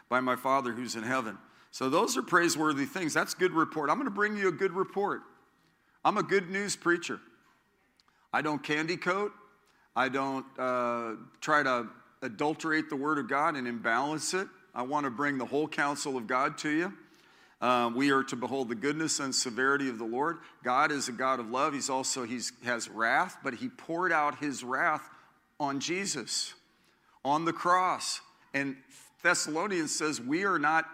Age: 50-69